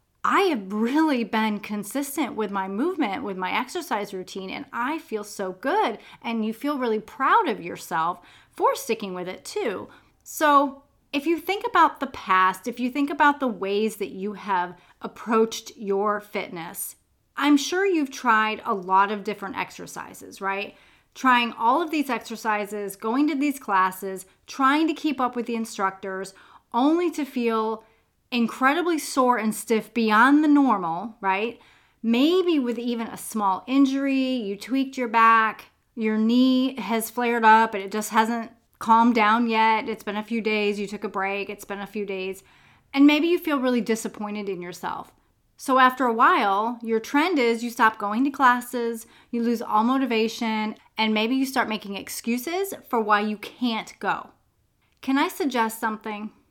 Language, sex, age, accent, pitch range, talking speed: English, female, 30-49, American, 210-270 Hz, 170 wpm